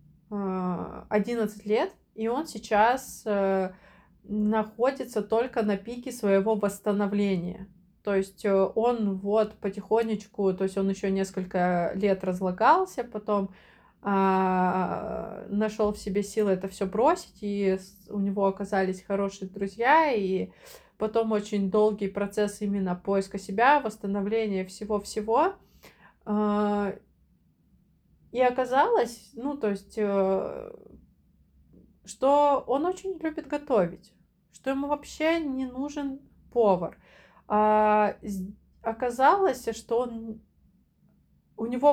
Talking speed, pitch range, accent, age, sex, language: 95 wpm, 200-250 Hz, native, 20-39, female, Russian